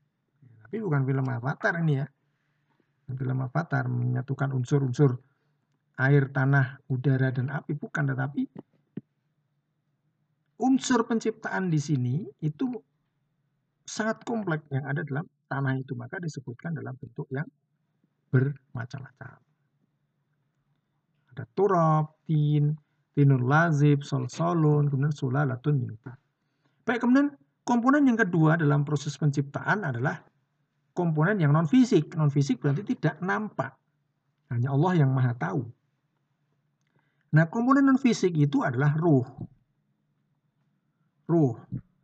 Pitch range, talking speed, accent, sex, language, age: 140-155 Hz, 105 wpm, native, male, Indonesian, 50-69